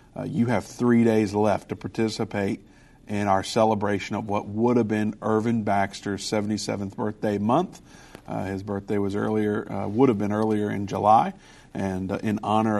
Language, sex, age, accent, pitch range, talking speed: English, male, 50-69, American, 100-110 Hz, 175 wpm